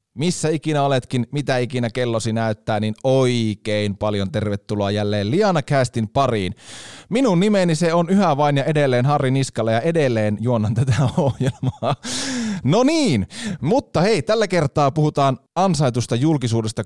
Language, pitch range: Finnish, 110-140 Hz